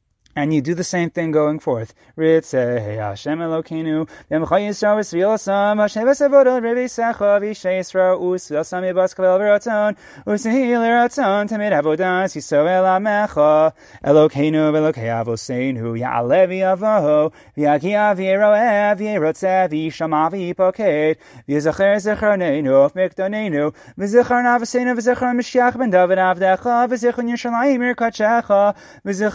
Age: 30-49